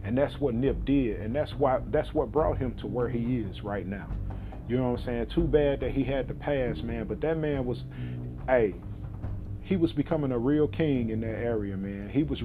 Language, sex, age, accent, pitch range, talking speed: English, male, 40-59, American, 115-150 Hz, 230 wpm